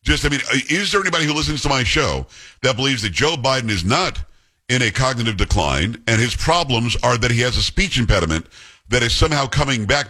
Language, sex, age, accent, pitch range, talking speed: English, male, 50-69, American, 105-140 Hz, 220 wpm